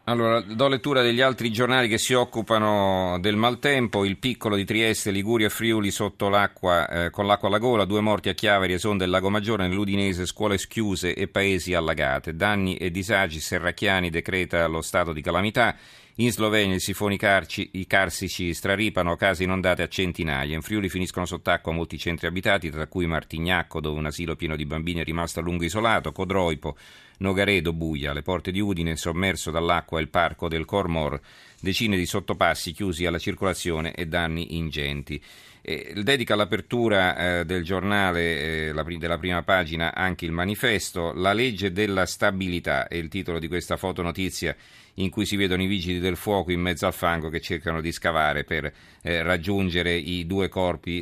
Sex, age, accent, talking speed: male, 40-59, native, 180 wpm